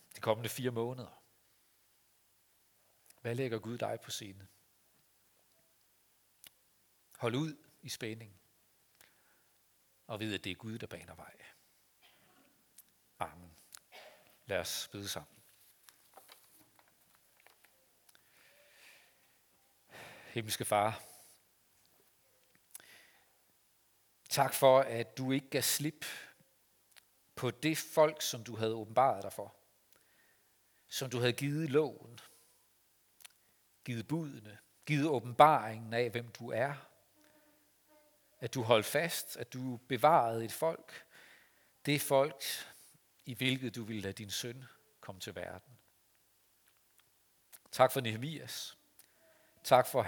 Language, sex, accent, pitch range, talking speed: Danish, male, native, 110-135 Hz, 100 wpm